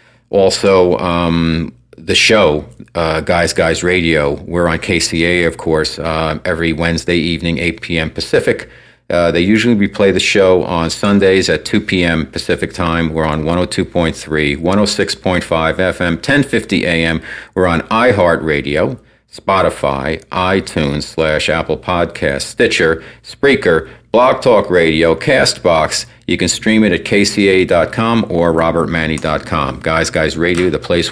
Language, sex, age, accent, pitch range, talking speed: English, male, 50-69, American, 80-95 Hz, 135 wpm